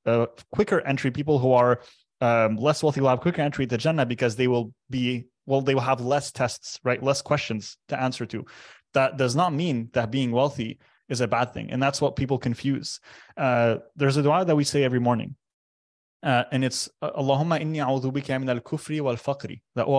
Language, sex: English, male